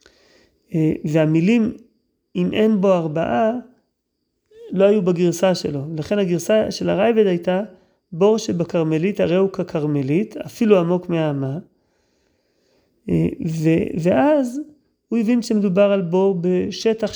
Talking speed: 100 wpm